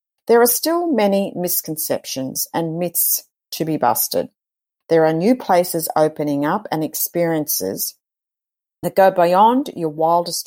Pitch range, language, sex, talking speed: 155-190 Hz, English, female, 130 wpm